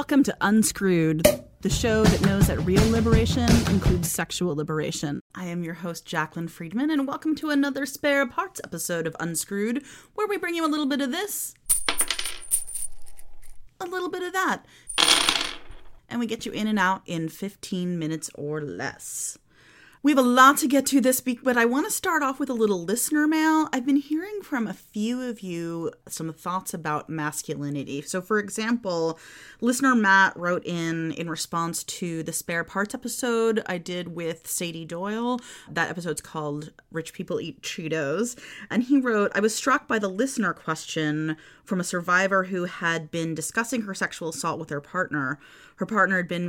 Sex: female